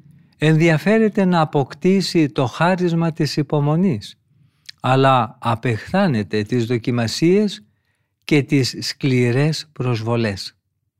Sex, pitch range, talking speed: male, 120-165 Hz, 80 wpm